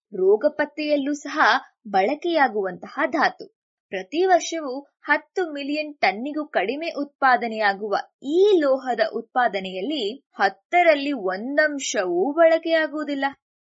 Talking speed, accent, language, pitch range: 85 wpm, Indian, English, 225-335 Hz